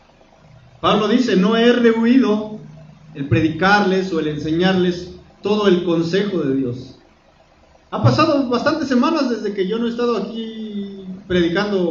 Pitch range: 170-240 Hz